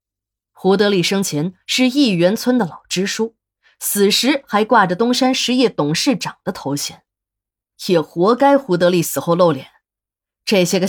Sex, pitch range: female, 150-225 Hz